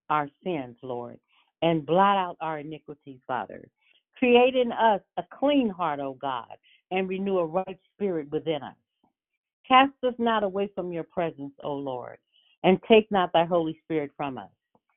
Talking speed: 165 wpm